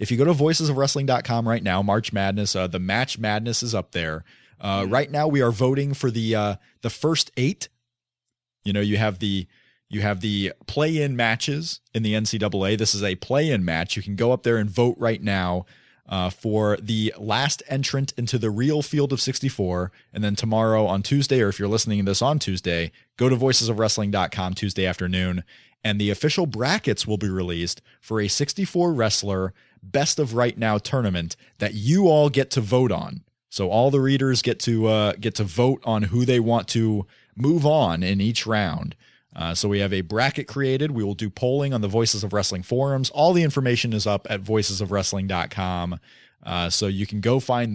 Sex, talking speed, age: male, 200 wpm, 30-49